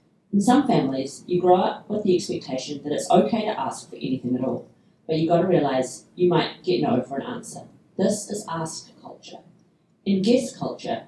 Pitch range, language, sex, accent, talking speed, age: 155-210 Hz, English, female, Australian, 200 wpm, 30-49